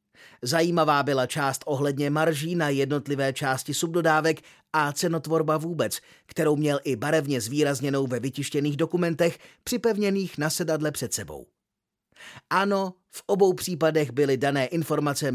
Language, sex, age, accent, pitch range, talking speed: Czech, male, 30-49, native, 130-165 Hz, 125 wpm